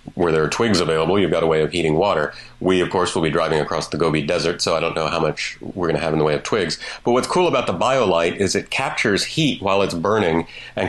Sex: male